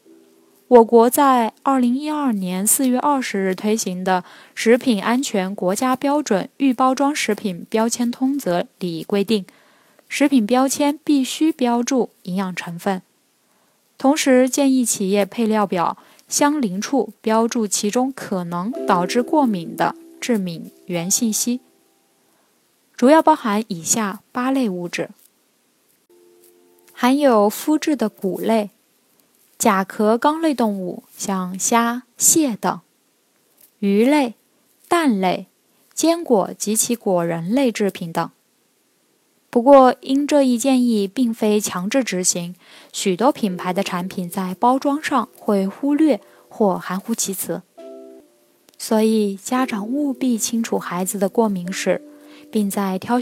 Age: 20-39